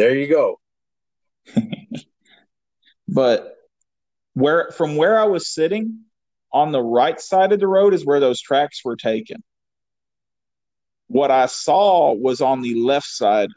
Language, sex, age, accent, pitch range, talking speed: English, male, 40-59, American, 130-185 Hz, 135 wpm